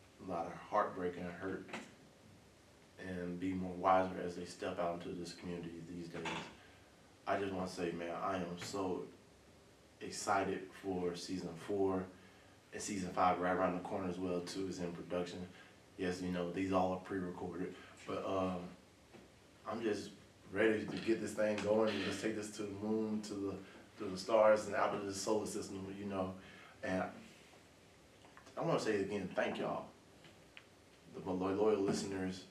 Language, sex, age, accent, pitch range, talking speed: English, male, 20-39, American, 90-100 Hz, 170 wpm